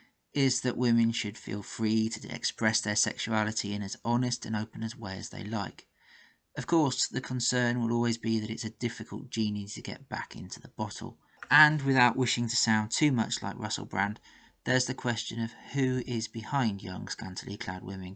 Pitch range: 105-120 Hz